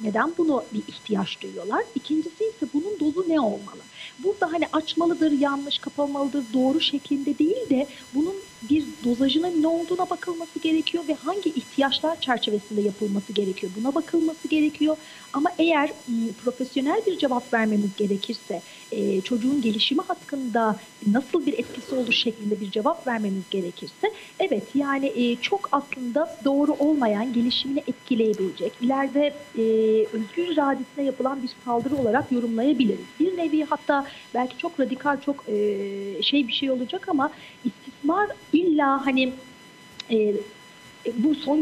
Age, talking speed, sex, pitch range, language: 40-59, 125 wpm, female, 230-300 Hz, Turkish